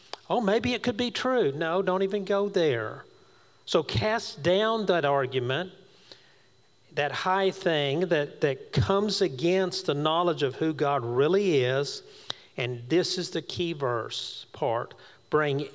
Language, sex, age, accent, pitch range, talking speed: English, male, 40-59, American, 140-190 Hz, 145 wpm